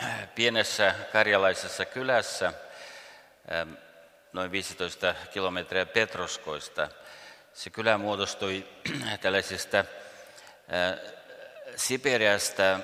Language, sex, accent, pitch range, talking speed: Swedish, male, Finnish, 90-100 Hz, 55 wpm